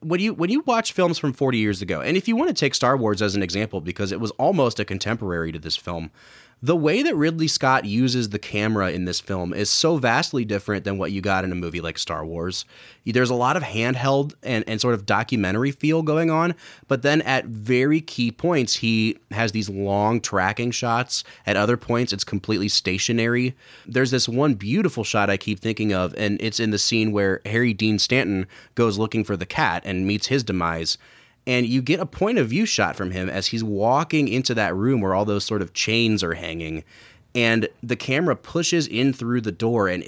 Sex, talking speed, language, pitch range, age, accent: male, 215 wpm, English, 100-130 Hz, 30-49, American